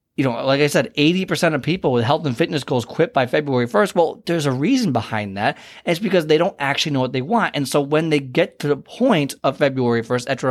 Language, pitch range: English, 125-155 Hz